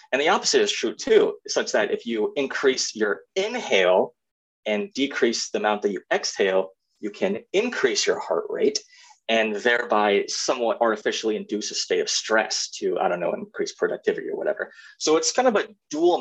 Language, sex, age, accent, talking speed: English, male, 30-49, American, 180 wpm